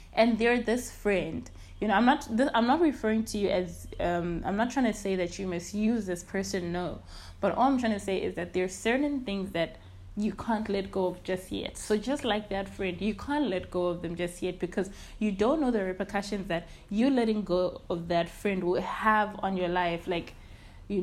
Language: English